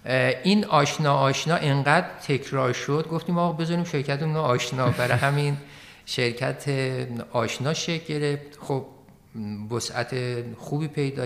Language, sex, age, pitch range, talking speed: Persian, male, 50-69, 110-140 Hz, 115 wpm